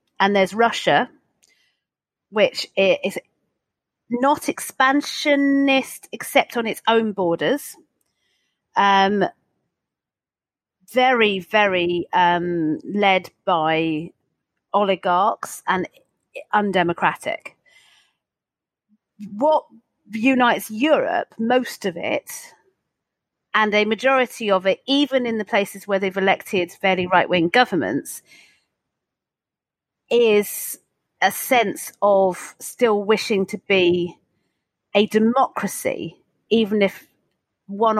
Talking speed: 85 wpm